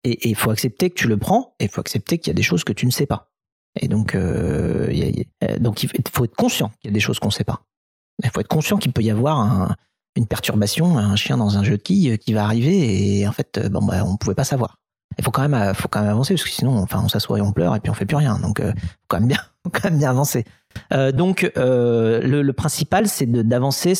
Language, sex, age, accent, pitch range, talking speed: French, male, 40-59, French, 105-150 Hz, 290 wpm